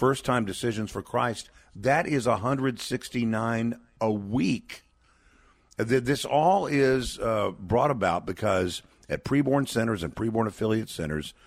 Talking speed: 120 wpm